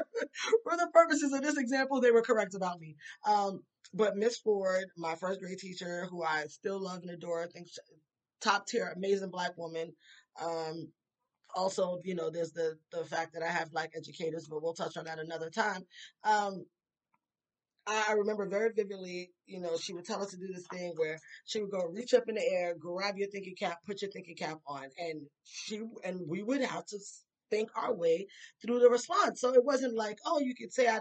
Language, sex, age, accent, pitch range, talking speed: English, female, 20-39, American, 170-215 Hz, 205 wpm